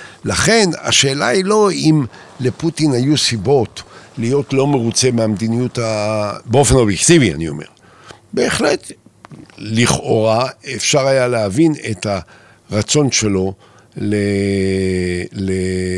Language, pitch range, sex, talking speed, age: Hebrew, 95-140 Hz, male, 100 wpm, 60-79